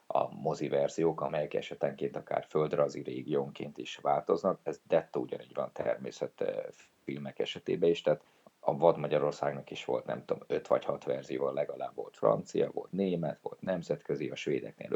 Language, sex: Hungarian, male